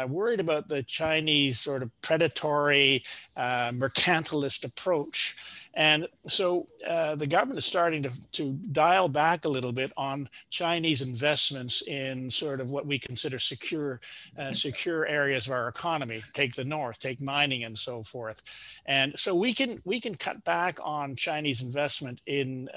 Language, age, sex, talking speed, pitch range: English, 50-69, male, 160 wpm, 130-165 Hz